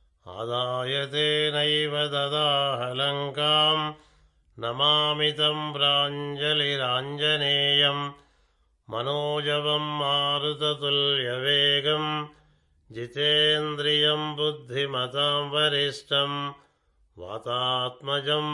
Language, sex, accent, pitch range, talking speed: Telugu, male, native, 140-150 Hz, 30 wpm